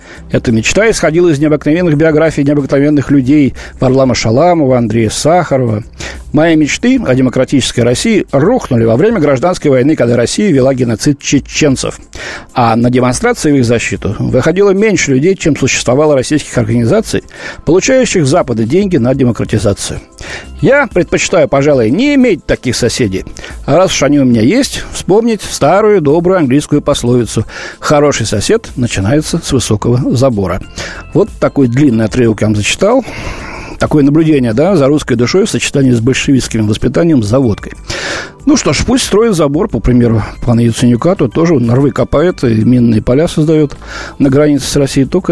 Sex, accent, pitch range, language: male, native, 120-160 Hz, Russian